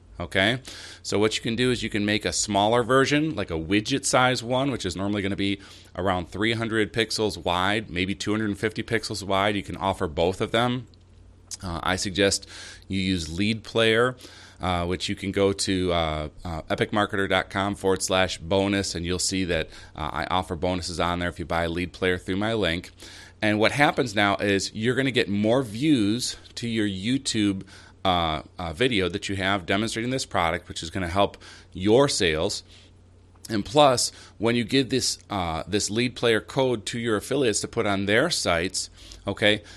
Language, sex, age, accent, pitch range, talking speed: English, male, 30-49, American, 90-110 Hz, 190 wpm